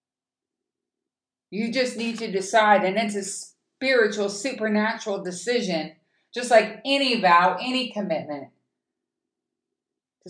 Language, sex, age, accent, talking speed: English, female, 50-69, American, 105 wpm